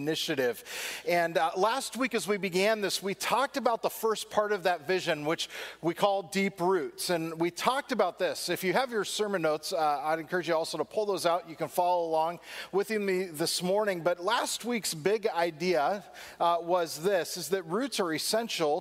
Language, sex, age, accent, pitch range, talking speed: English, male, 40-59, American, 165-200 Hz, 205 wpm